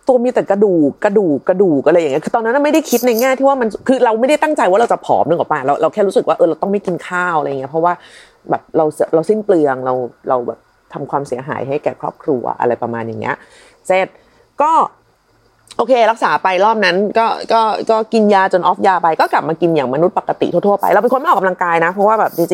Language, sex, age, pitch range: Thai, female, 30-49, 160-225 Hz